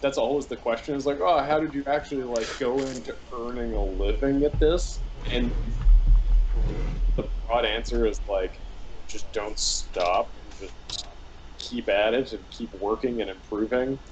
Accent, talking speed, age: American, 155 wpm, 20-39